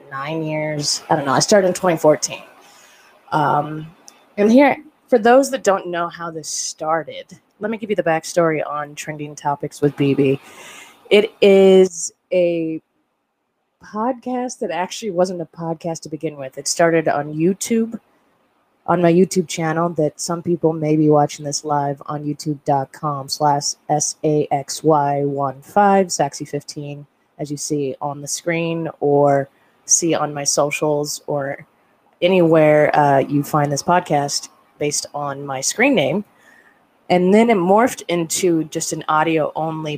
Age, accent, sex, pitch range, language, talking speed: 20-39, American, female, 145-180 Hz, English, 150 wpm